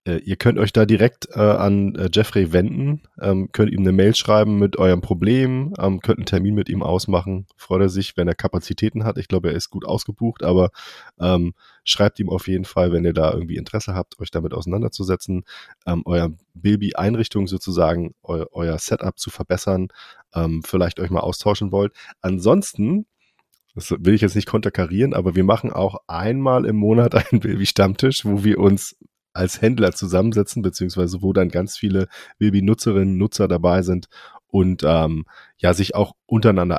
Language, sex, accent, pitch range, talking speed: German, male, German, 90-110 Hz, 175 wpm